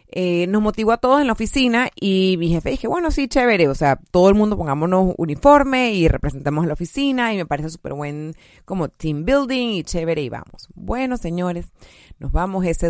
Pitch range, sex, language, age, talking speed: 135-180 Hz, female, Spanish, 30-49, 205 wpm